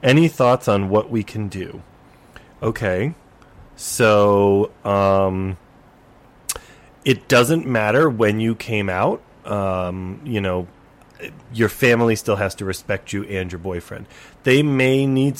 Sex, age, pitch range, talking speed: male, 30-49, 100-130 Hz, 130 wpm